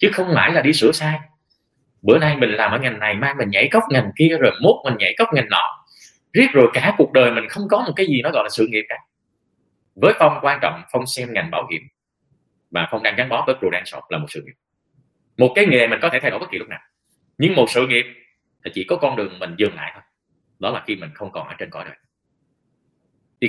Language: Vietnamese